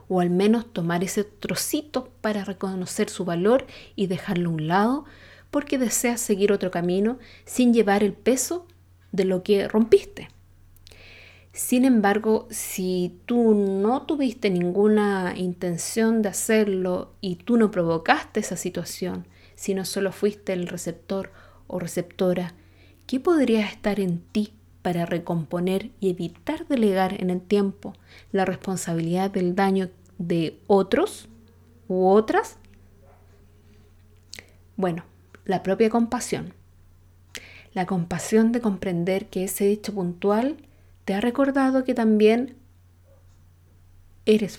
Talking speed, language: 120 wpm, Spanish